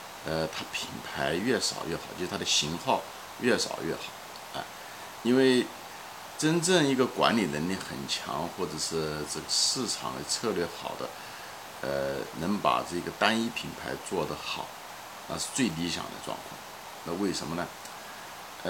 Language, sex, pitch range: Chinese, male, 80-110 Hz